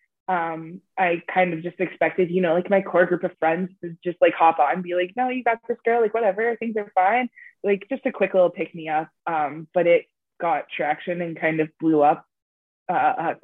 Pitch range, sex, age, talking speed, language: 160-185 Hz, female, 20-39, 235 wpm, English